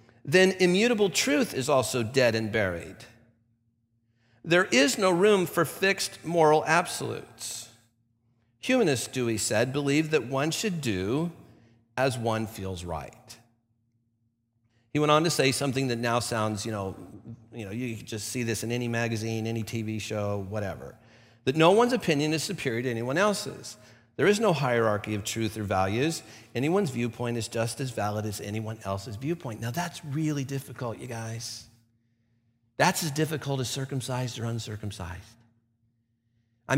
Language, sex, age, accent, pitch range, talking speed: English, male, 50-69, American, 115-155 Hz, 150 wpm